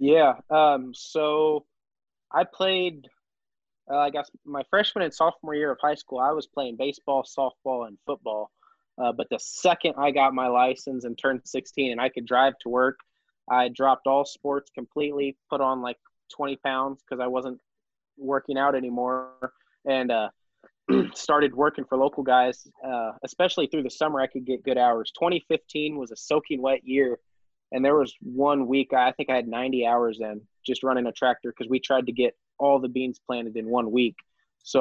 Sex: male